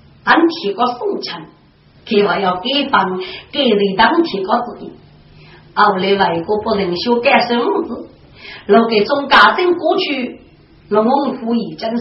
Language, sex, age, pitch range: Chinese, female, 40-59, 215-330 Hz